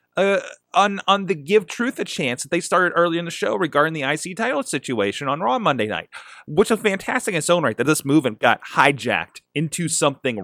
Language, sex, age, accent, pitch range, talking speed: English, male, 30-49, American, 125-180 Hz, 220 wpm